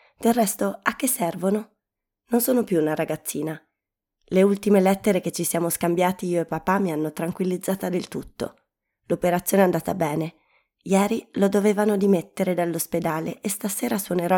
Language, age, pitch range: Italian, 20-39, 170-200 Hz